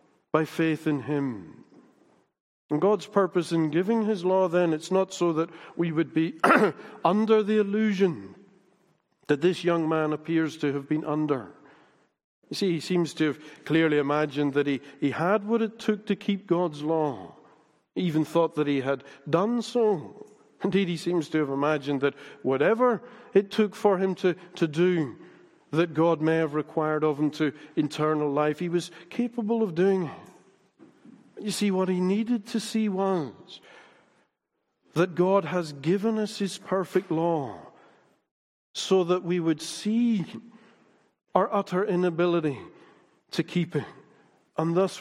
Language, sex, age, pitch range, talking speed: English, male, 50-69, 150-190 Hz, 155 wpm